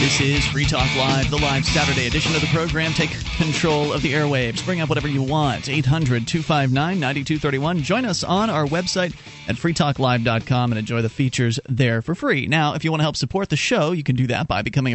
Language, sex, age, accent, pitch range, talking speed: English, male, 30-49, American, 125-160 Hz, 210 wpm